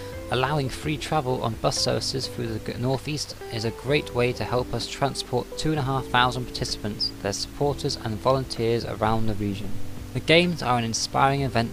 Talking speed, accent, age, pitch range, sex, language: 165 wpm, British, 20-39, 110-140 Hz, male, English